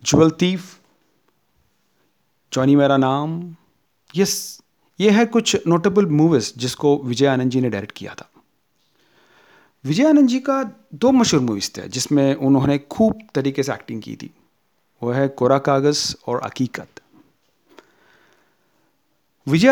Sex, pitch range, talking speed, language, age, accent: male, 125-170 Hz, 125 wpm, Hindi, 40-59, native